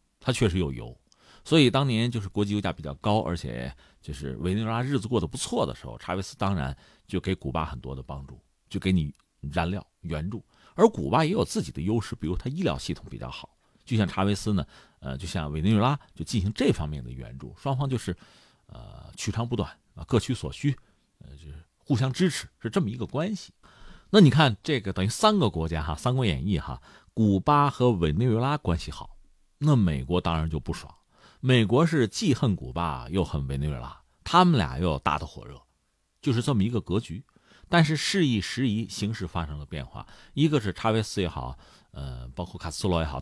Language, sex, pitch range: Chinese, male, 80-125 Hz